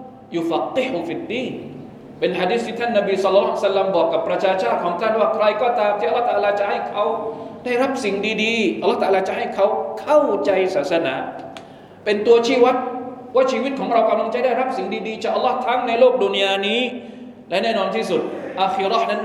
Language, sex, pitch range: Thai, male, 195-255 Hz